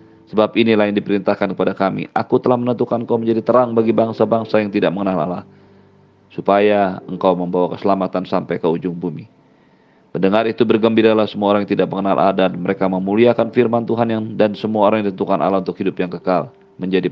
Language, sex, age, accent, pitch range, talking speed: Indonesian, male, 40-59, native, 90-110 Hz, 180 wpm